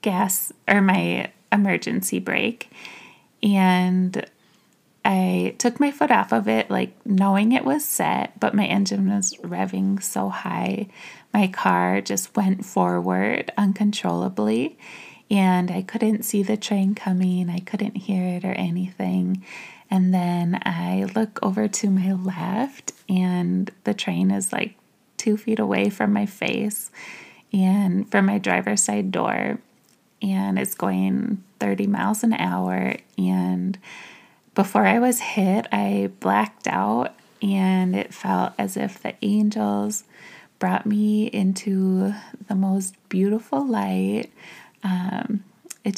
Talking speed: 130 wpm